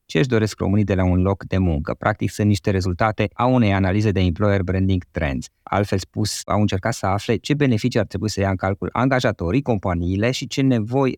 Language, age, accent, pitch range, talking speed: Romanian, 20-39, native, 95-120 Hz, 215 wpm